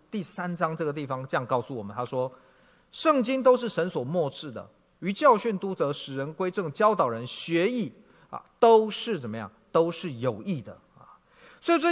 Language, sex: Chinese, male